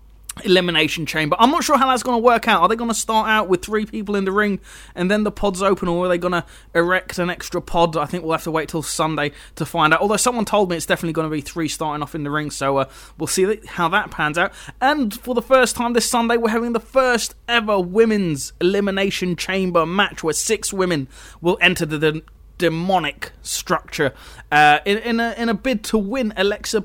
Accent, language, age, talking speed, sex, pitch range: British, English, 20-39, 240 wpm, male, 165-220 Hz